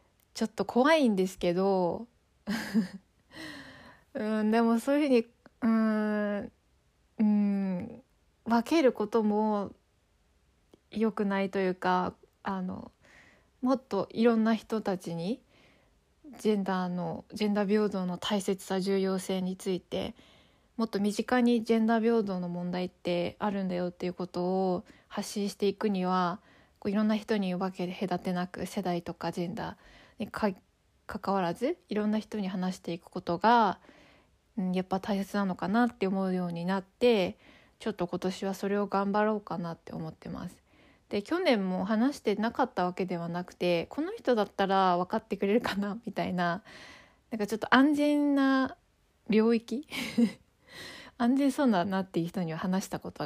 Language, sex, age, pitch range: Japanese, female, 20-39, 185-230 Hz